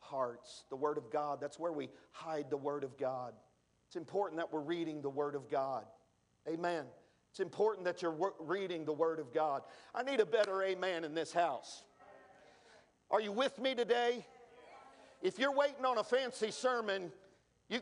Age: 50-69